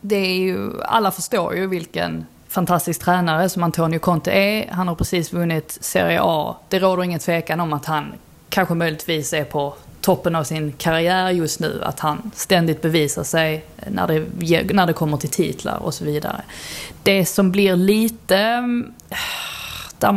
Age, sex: 20-39, female